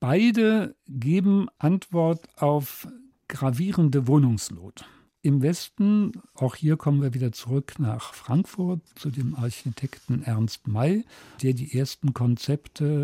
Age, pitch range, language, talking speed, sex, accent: 50-69, 125-155 Hz, German, 115 wpm, male, German